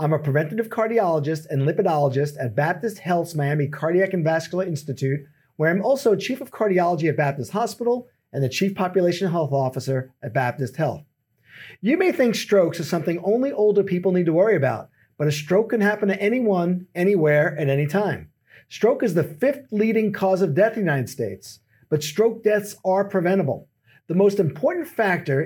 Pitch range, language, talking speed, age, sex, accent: 150-205 Hz, English, 180 wpm, 40-59, male, American